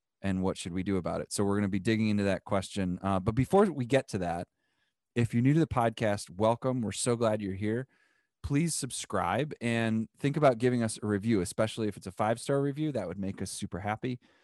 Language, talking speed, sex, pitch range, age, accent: English, 235 wpm, male, 95-120 Hz, 30-49, American